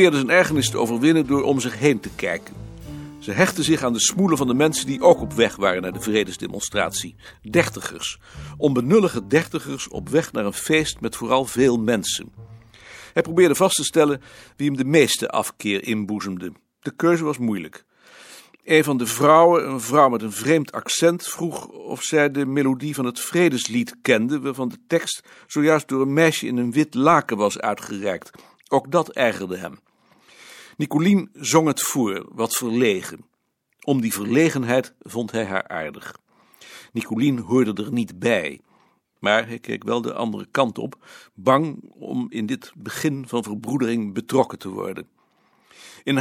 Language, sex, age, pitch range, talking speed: Dutch, male, 60-79, 115-155 Hz, 170 wpm